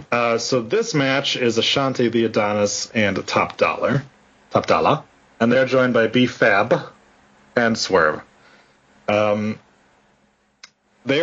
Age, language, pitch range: 30-49, English, 110-160 Hz